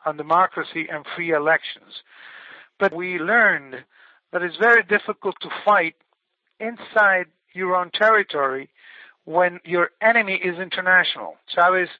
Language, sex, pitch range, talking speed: English, male, 165-200 Hz, 120 wpm